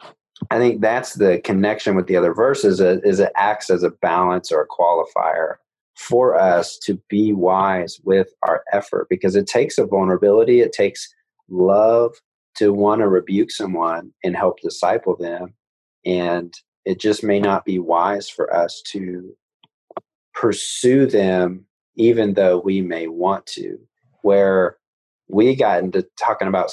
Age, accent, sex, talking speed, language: 30-49, American, male, 150 wpm, English